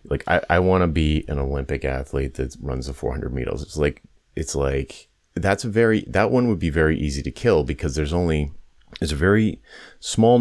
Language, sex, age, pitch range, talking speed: English, male, 30-49, 70-95 Hz, 210 wpm